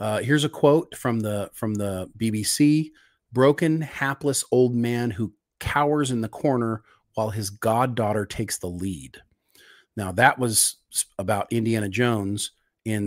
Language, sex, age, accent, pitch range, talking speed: English, male, 40-59, American, 105-130 Hz, 140 wpm